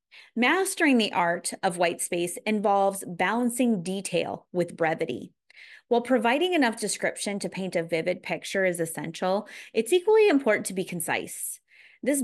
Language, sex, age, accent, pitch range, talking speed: English, female, 30-49, American, 185-250 Hz, 140 wpm